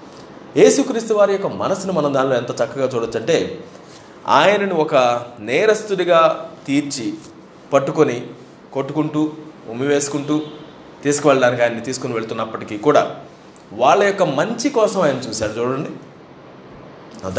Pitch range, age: 130-185 Hz, 20-39